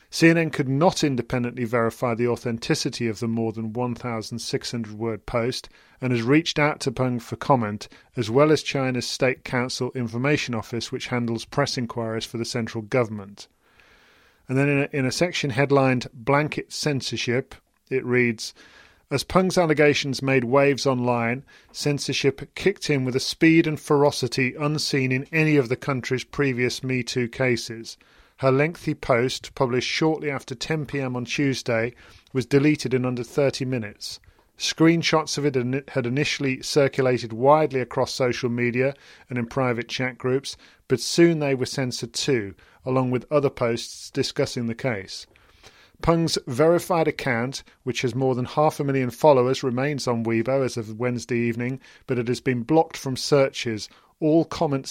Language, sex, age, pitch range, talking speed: English, male, 40-59, 120-140 Hz, 155 wpm